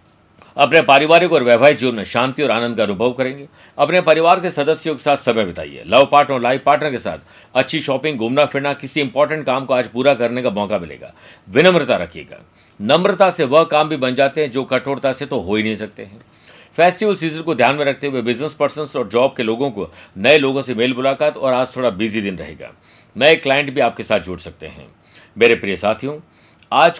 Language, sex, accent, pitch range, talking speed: Hindi, male, native, 120-155 Hz, 215 wpm